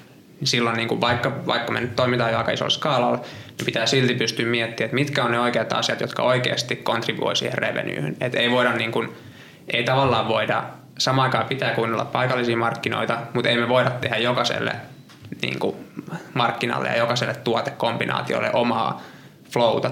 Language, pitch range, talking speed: Finnish, 115-130 Hz, 165 wpm